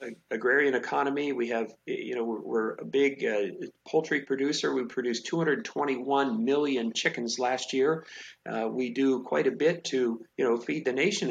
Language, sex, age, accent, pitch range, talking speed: English, male, 50-69, American, 125-175 Hz, 165 wpm